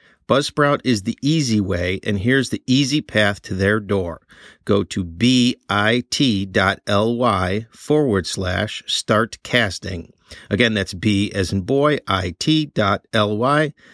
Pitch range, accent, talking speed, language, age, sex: 100-125 Hz, American, 115 wpm, English, 50-69, male